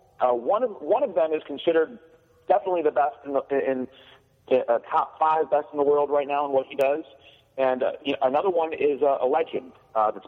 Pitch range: 120-185 Hz